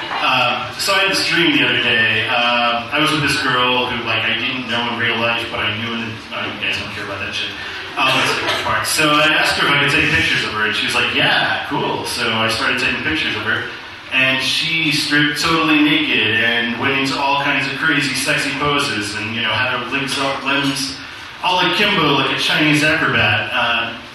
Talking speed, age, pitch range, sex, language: 220 wpm, 30-49, 115-145 Hz, male, English